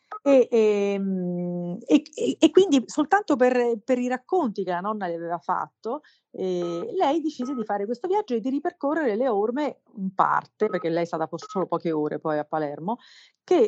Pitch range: 175-230 Hz